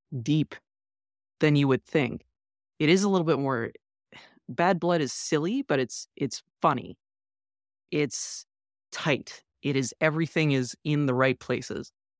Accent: American